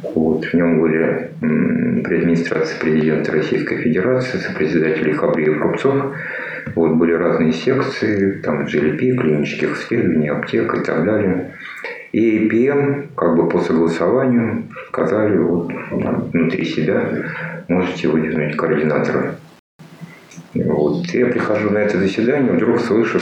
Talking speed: 120 wpm